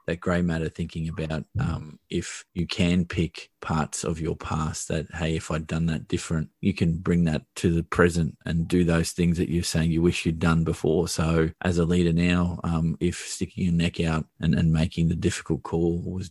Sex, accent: male, Australian